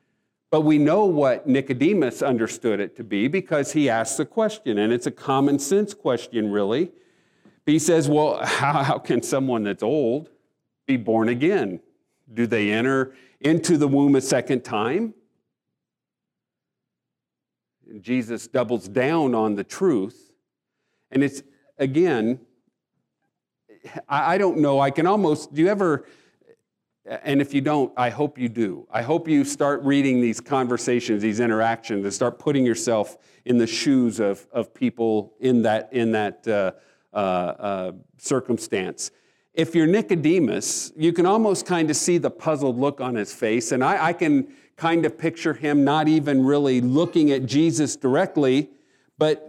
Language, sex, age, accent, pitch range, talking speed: English, male, 50-69, American, 120-155 Hz, 150 wpm